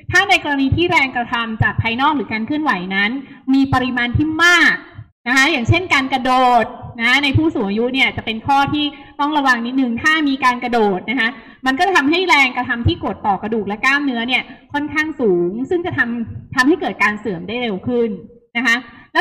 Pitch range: 225-295 Hz